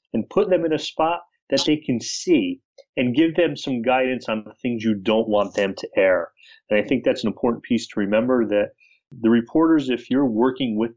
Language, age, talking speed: English, 30-49, 220 wpm